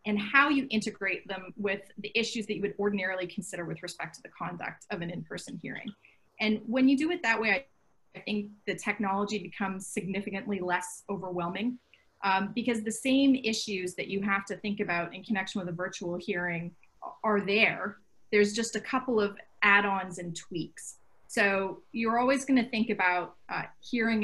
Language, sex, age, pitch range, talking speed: English, female, 30-49, 185-220 Hz, 180 wpm